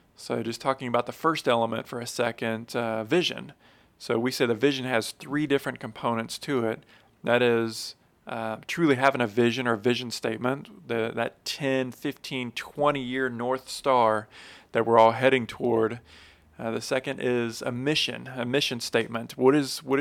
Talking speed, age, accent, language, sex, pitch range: 170 wpm, 40-59, American, English, male, 115-135 Hz